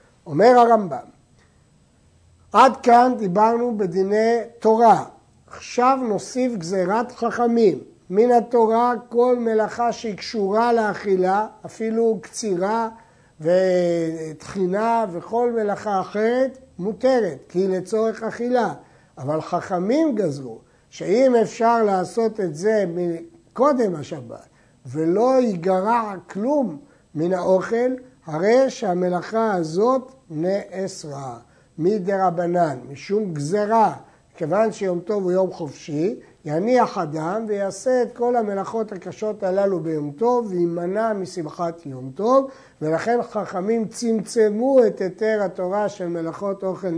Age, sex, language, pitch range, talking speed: 60-79, male, Hebrew, 175-230 Hz, 105 wpm